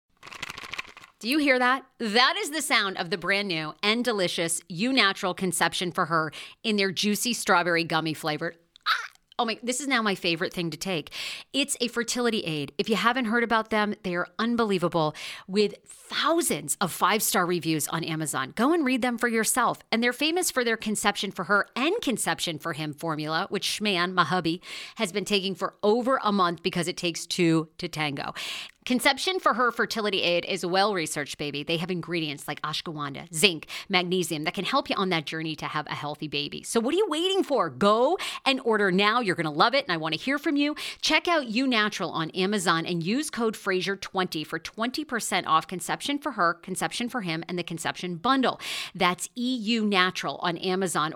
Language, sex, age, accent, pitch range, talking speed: English, female, 40-59, American, 170-240 Hz, 200 wpm